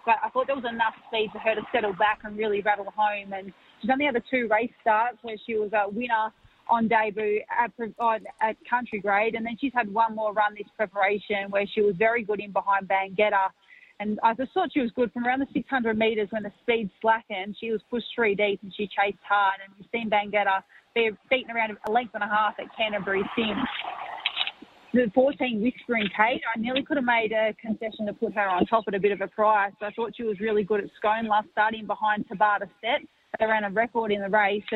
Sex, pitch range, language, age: female, 200-225 Hz, English, 30-49